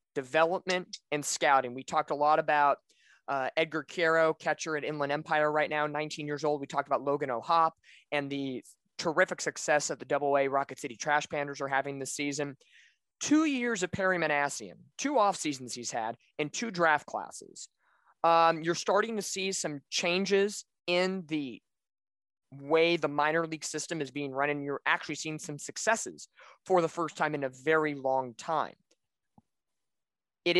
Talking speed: 170 wpm